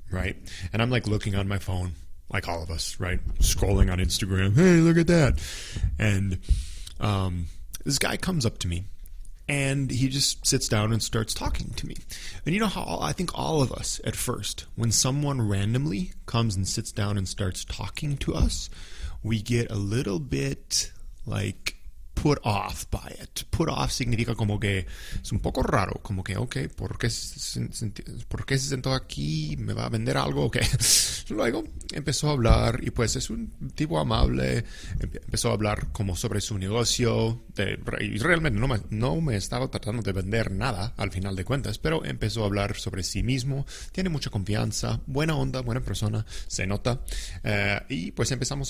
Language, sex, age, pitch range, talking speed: English, male, 20-39, 95-125 Hz, 180 wpm